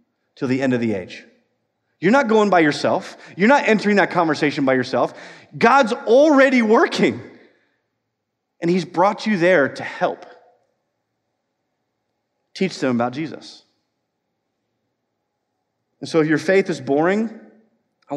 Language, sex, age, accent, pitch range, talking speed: English, male, 30-49, American, 140-220 Hz, 130 wpm